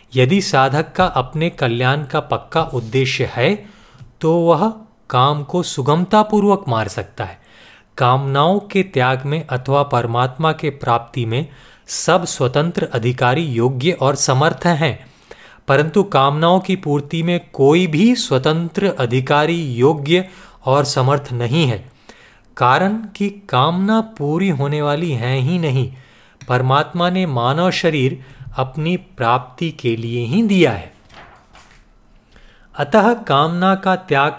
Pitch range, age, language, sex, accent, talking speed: 125-170 Hz, 30-49, Hindi, male, native, 125 wpm